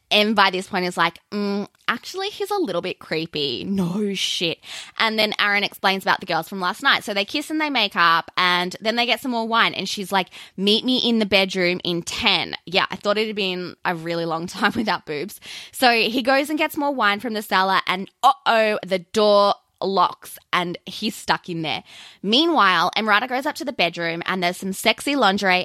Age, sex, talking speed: 20-39, female, 220 wpm